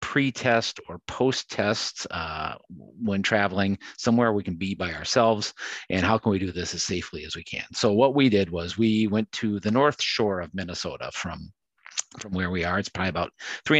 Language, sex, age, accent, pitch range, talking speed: English, male, 40-59, American, 95-125 Hz, 190 wpm